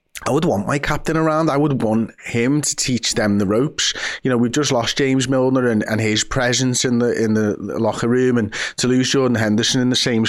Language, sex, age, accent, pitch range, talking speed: English, male, 20-39, British, 115-150 Hz, 235 wpm